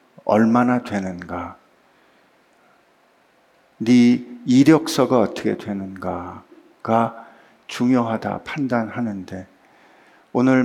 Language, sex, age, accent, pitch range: Korean, male, 50-69, native, 110-140 Hz